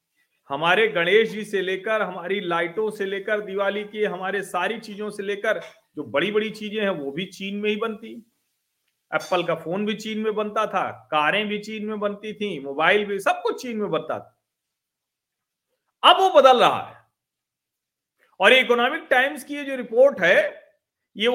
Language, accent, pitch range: Hindi, native, 185-245 Hz